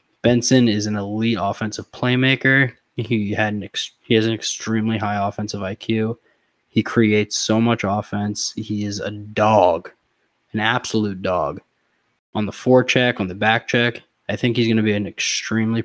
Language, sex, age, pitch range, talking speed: English, male, 20-39, 105-125 Hz, 150 wpm